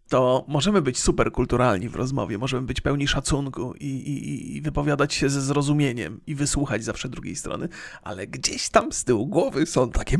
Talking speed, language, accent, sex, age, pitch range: 175 wpm, Polish, native, male, 40-59, 125-165 Hz